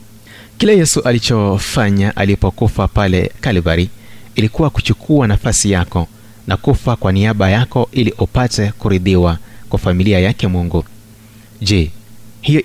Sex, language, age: male, Swahili, 30-49